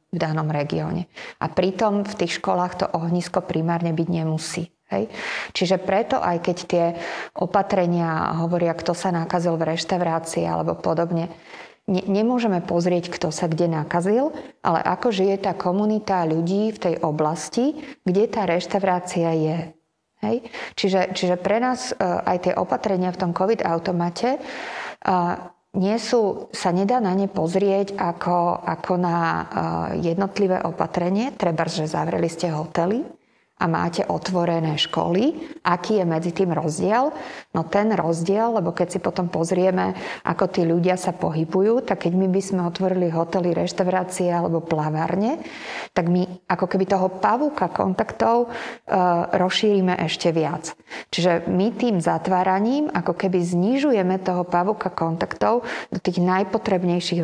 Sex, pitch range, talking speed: female, 170-195 Hz, 140 wpm